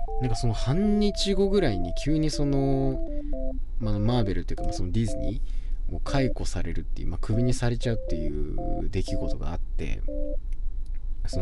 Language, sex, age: Japanese, male, 20-39